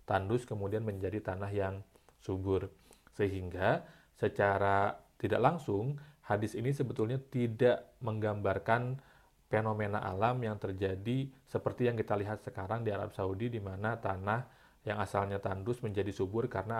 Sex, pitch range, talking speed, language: male, 100-115 Hz, 130 wpm, Indonesian